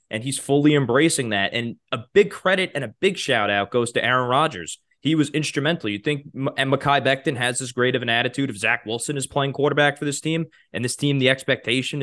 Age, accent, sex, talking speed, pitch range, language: 20-39, American, male, 230 wpm, 110-145 Hz, English